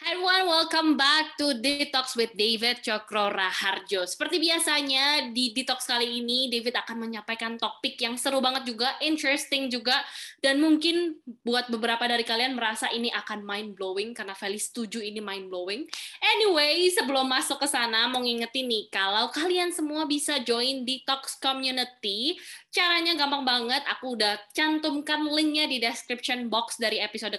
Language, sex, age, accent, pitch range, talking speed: Indonesian, female, 20-39, native, 225-300 Hz, 150 wpm